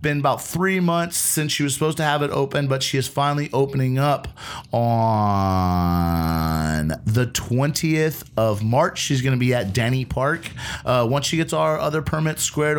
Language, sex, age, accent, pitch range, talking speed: English, male, 30-49, American, 115-145 Hz, 180 wpm